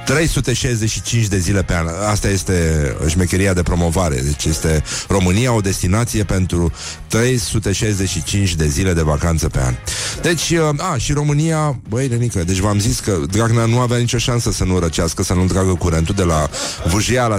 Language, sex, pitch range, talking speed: Romanian, male, 95-125 Hz, 165 wpm